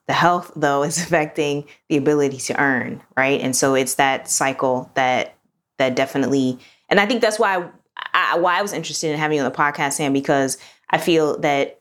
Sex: female